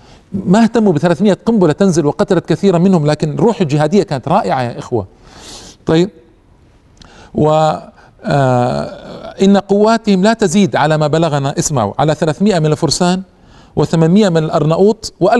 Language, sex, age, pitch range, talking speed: Arabic, male, 50-69, 120-165 Hz, 135 wpm